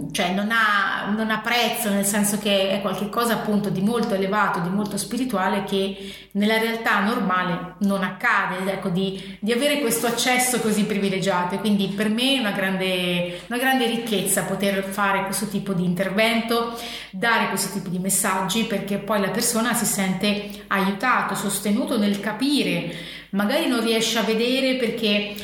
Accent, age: native, 30-49